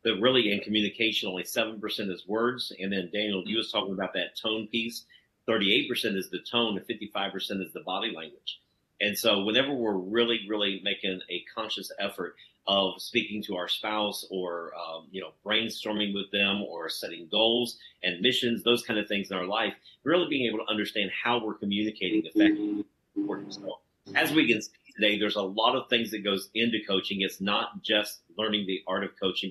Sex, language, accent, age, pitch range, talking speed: male, English, American, 40-59, 100-120 Hz, 190 wpm